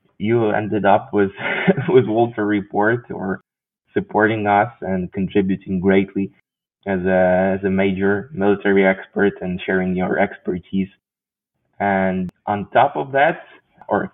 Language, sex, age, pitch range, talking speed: English, male, 20-39, 95-105 Hz, 125 wpm